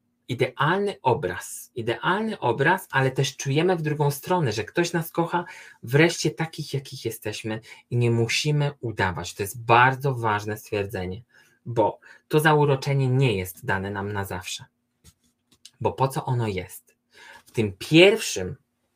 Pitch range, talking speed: 120-150 Hz, 140 wpm